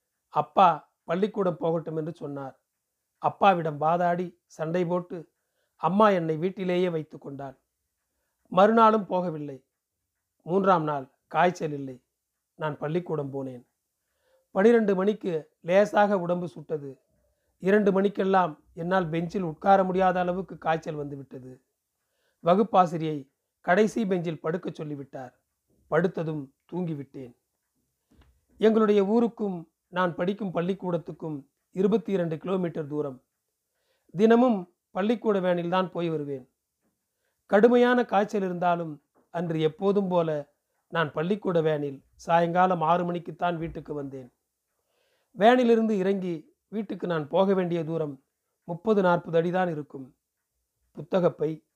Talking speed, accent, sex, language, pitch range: 95 wpm, native, male, Tamil, 155-195 Hz